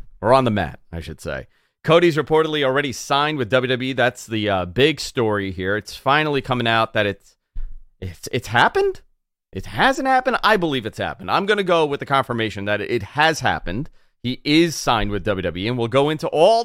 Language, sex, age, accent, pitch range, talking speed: English, male, 30-49, American, 105-160 Hz, 200 wpm